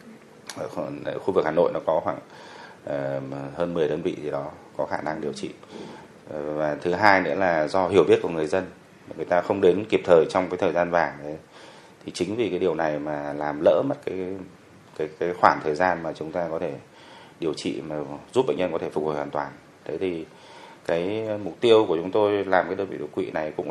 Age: 30-49